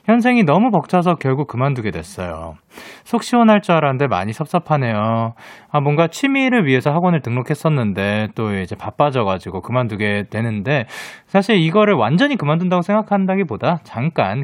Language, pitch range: Korean, 120-200 Hz